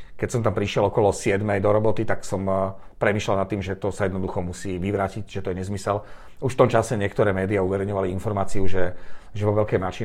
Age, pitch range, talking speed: 40-59, 95-115 Hz, 215 wpm